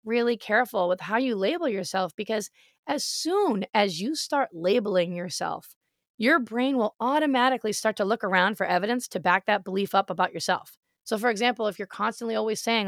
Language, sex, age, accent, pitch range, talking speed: English, female, 20-39, American, 195-255 Hz, 185 wpm